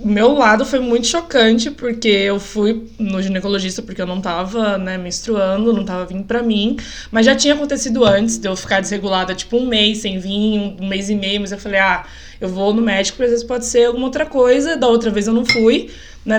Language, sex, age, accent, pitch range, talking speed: Portuguese, female, 20-39, Brazilian, 200-260 Hz, 225 wpm